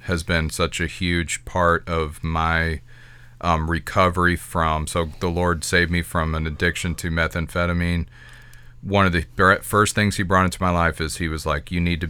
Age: 40-59